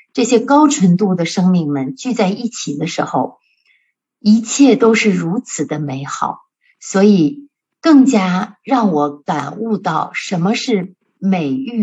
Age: 60-79